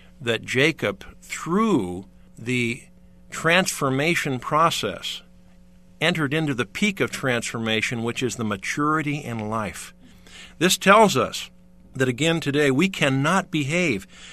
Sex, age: male, 50-69